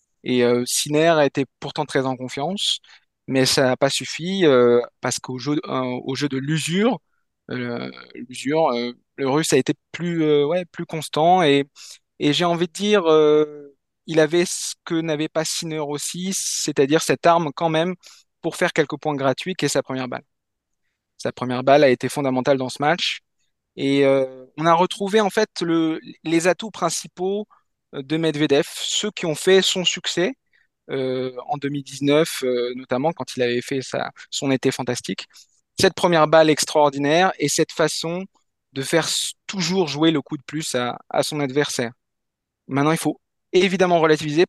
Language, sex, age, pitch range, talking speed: French, male, 20-39, 135-170 Hz, 175 wpm